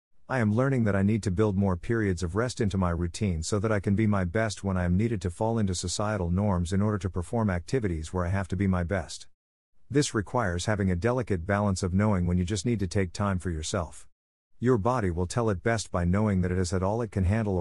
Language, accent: English, American